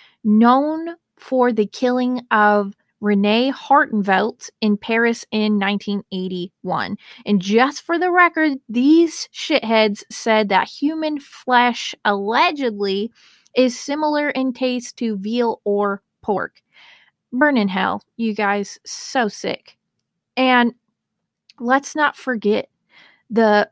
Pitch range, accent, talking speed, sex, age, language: 220-285 Hz, American, 105 wpm, female, 30-49, English